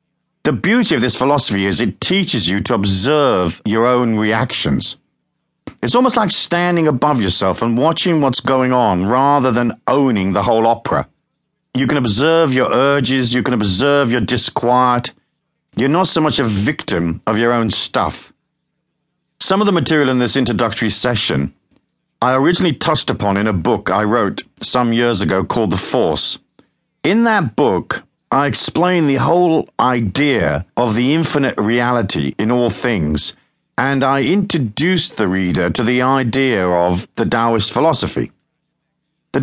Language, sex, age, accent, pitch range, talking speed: English, male, 50-69, British, 110-160 Hz, 155 wpm